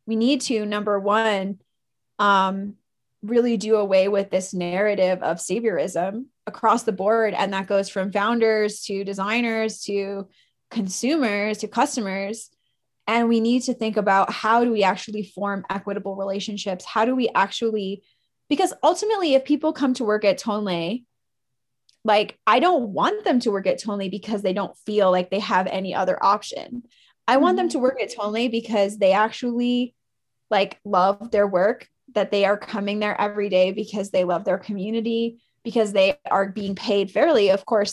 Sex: female